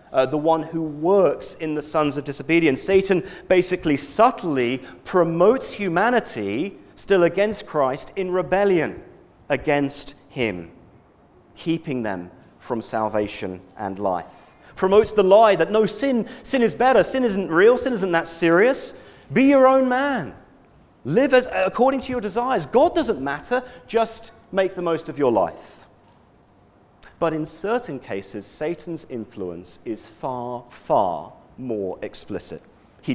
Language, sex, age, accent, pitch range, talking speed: English, male, 40-59, British, 115-195 Hz, 135 wpm